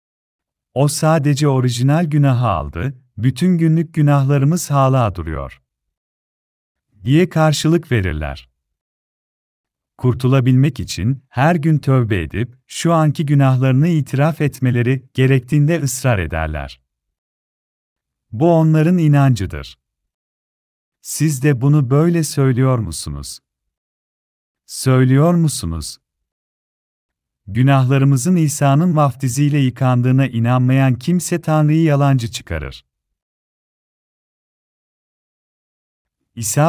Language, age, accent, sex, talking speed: Turkish, 40-59, native, male, 80 wpm